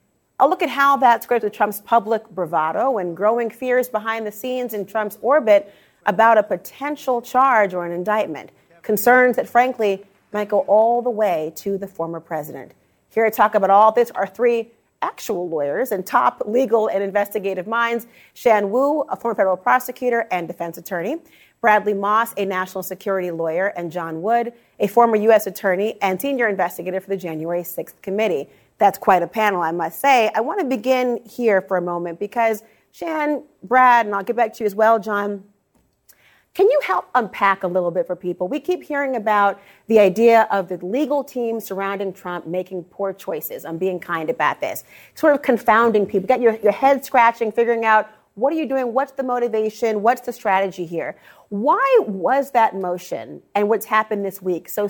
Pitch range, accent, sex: 190-240 Hz, American, female